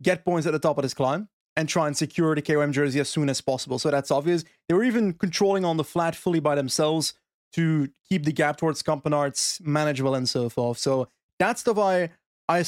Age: 20-39